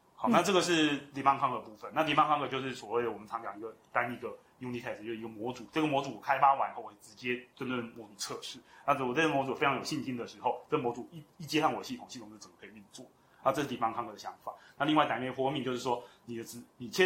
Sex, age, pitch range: male, 30-49, 115-140 Hz